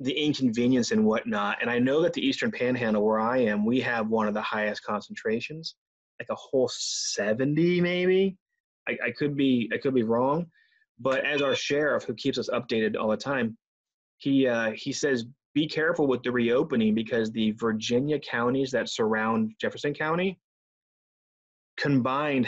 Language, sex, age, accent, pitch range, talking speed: English, male, 30-49, American, 120-175 Hz, 170 wpm